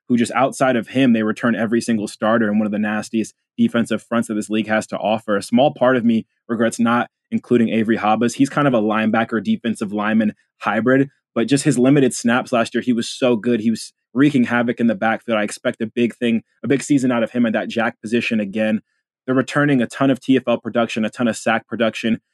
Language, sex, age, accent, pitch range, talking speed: English, male, 20-39, American, 110-130 Hz, 235 wpm